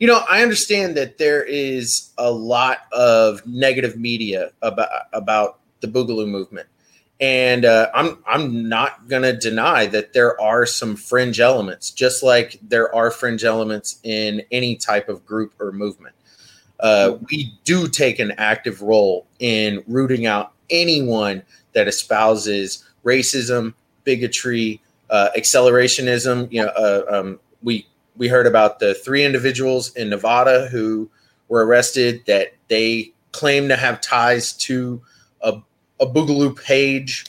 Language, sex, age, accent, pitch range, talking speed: English, male, 30-49, American, 110-130 Hz, 140 wpm